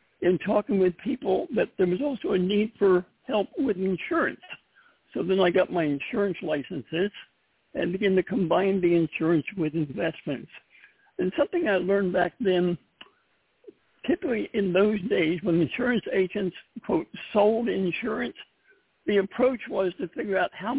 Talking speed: 155 wpm